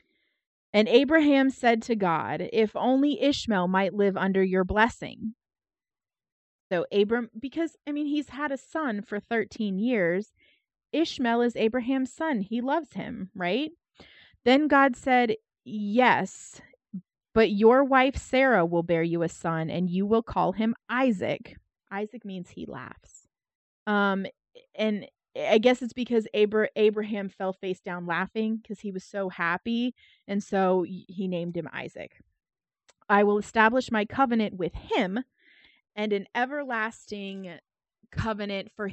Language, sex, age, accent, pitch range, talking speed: English, female, 30-49, American, 190-245 Hz, 140 wpm